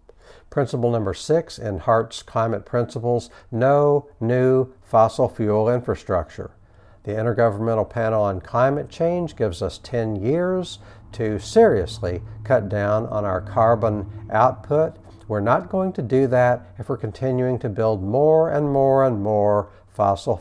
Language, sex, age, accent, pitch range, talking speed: English, male, 60-79, American, 105-125 Hz, 140 wpm